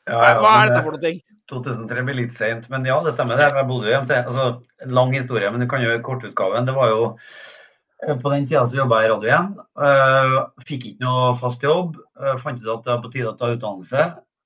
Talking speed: 230 wpm